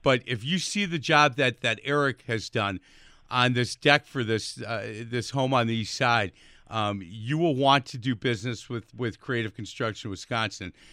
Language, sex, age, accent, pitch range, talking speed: English, male, 50-69, American, 120-155 Hz, 190 wpm